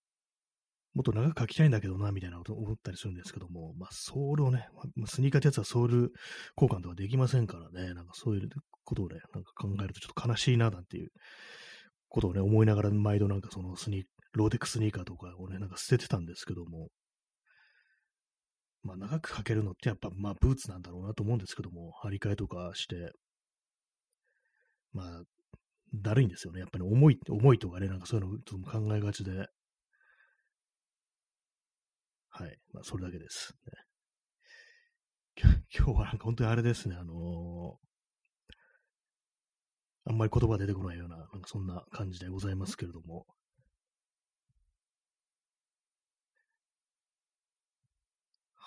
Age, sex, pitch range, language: 30-49, male, 95-125 Hz, Japanese